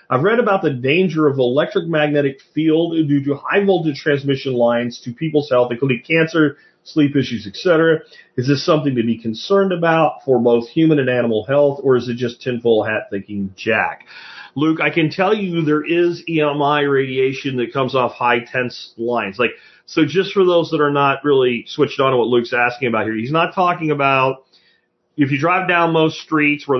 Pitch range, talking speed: 115-150 Hz, 195 wpm